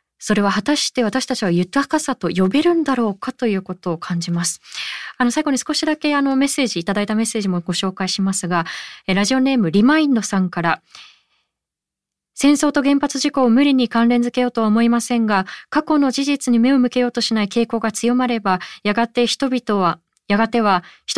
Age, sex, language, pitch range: 20-39, female, Japanese, 195-260 Hz